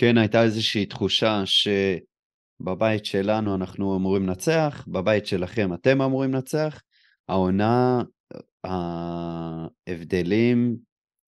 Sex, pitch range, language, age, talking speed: male, 90-115 Hz, Hebrew, 30-49, 85 wpm